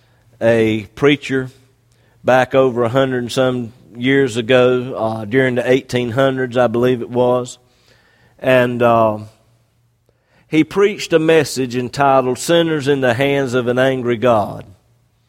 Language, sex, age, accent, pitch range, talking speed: English, male, 50-69, American, 125-150 Hz, 130 wpm